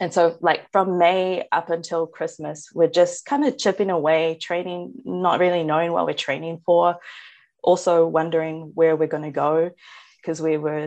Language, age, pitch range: English, 20-39, 150-175 Hz